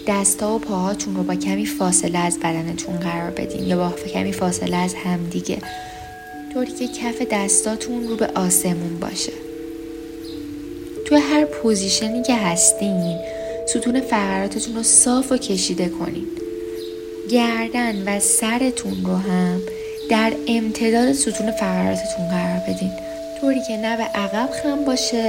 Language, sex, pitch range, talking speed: Persian, female, 160-235 Hz, 130 wpm